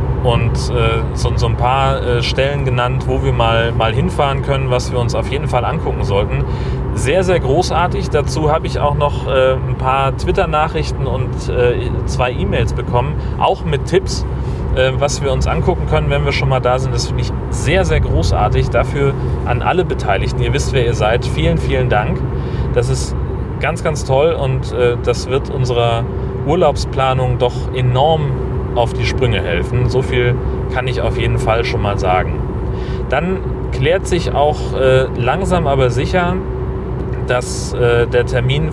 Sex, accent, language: male, German, German